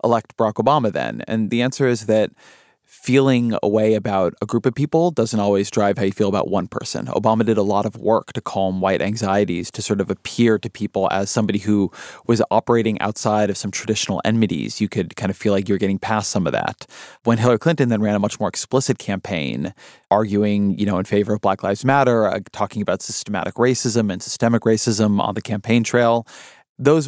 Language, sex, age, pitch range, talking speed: English, male, 30-49, 100-120 Hz, 215 wpm